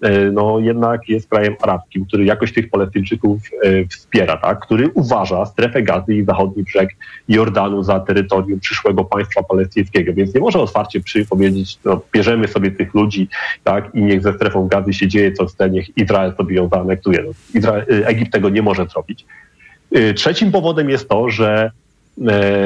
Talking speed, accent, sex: 170 wpm, native, male